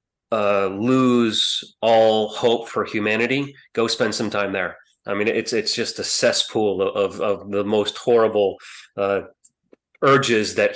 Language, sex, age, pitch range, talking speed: English, male, 30-49, 105-120 Hz, 150 wpm